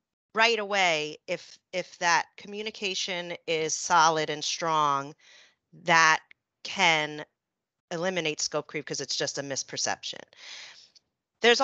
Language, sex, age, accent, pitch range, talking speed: English, female, 40-59, American, 160-205 Hz, 110 wpm